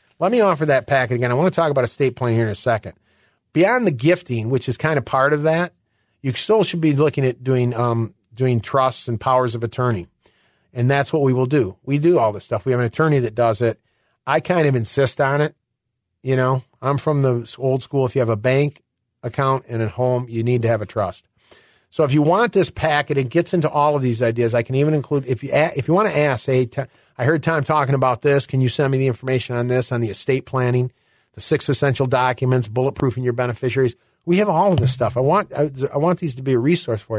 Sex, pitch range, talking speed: male, 120-145 Hz, 250 wpm